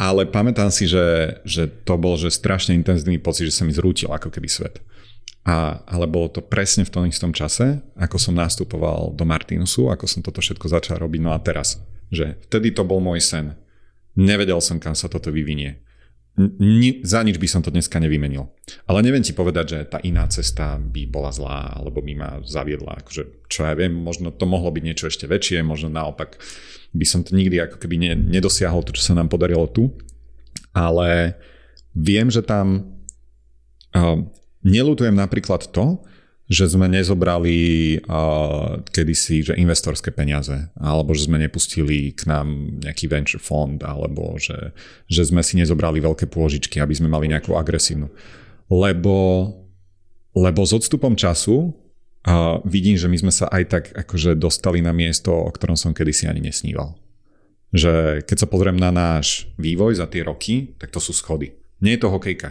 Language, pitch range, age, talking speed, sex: Slovak, 80-95 Hz, 40-59, 175 wpm, male